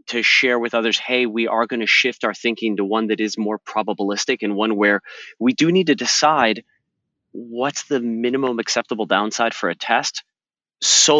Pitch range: 105-145 Hz